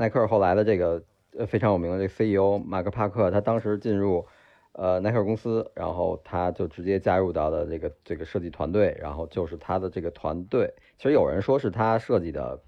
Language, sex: Chinese, male